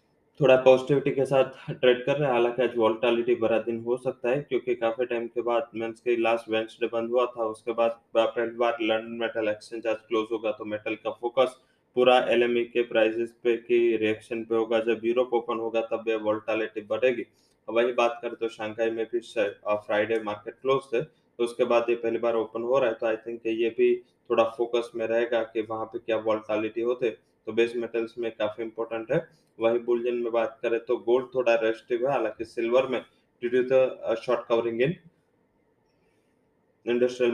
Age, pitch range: 20-39, 115-120 Hz